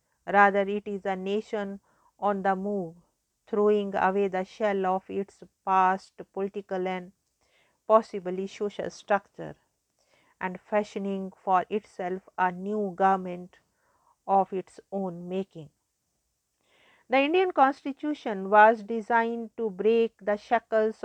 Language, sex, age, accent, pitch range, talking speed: English, female, 50-69, Indian, 195-220 Hz, 115 wpm